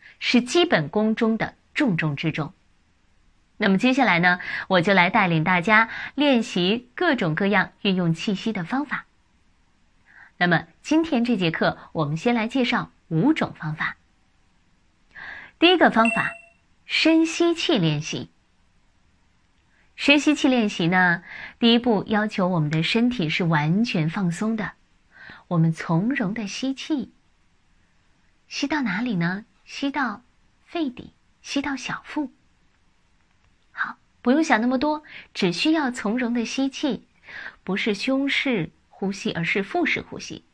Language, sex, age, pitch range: Chinese, female, 20-39, 170-260 Hz